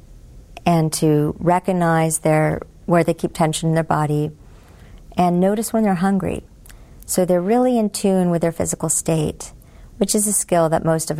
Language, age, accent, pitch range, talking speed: English, 50-69, American, 160-190 Hz, 165 wpm